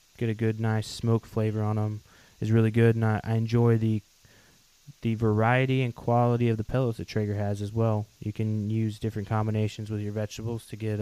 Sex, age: male, 20-39